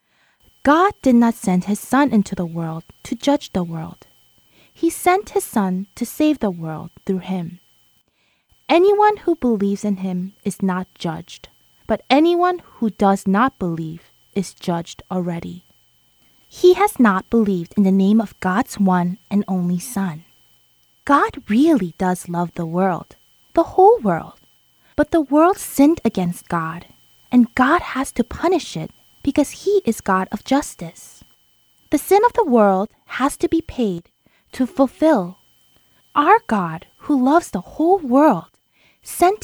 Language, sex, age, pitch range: Korean, female, 20-39, 185-300 Hz